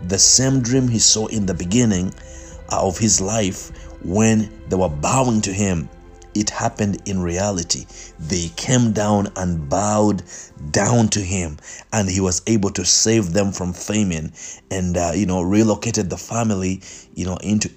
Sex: male